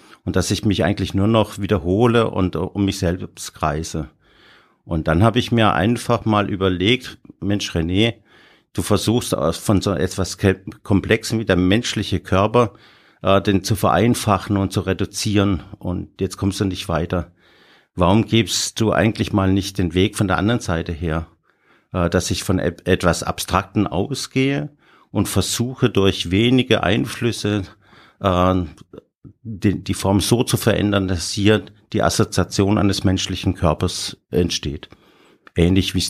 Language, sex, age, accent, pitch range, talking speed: German, male, 50-69, German, 90-110 Hz, 145 wpm